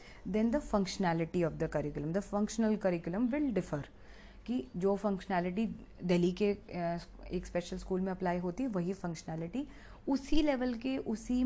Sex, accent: female, native